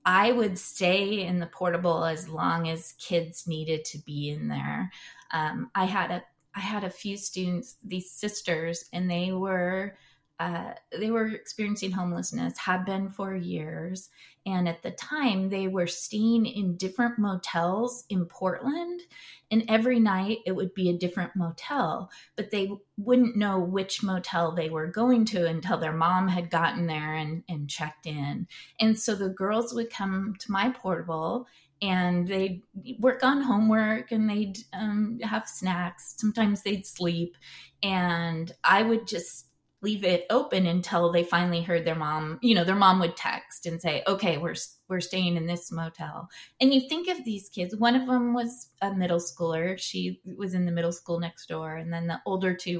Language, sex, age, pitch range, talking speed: English, female, 20-39, 170-220 Hz, 175 wpm